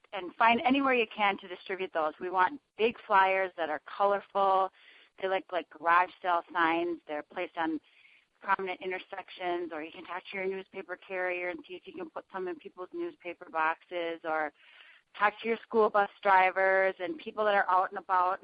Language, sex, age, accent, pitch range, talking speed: English, female, 30-49, American, 180-230 Hz, 190 wpm